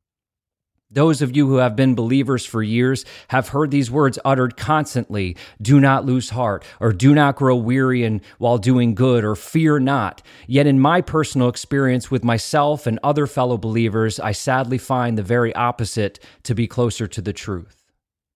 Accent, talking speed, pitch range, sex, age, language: American, 175 wpm, 110-140 Hz, male, 40-59, English